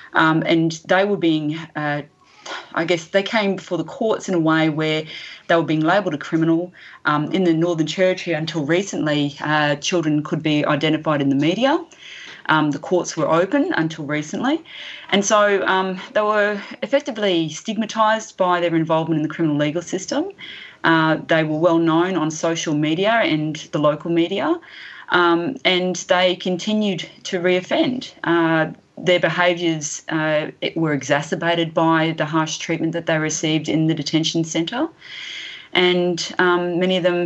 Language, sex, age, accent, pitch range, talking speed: English, female, 30-49, Australian, 155-185 Hz, 160 wpm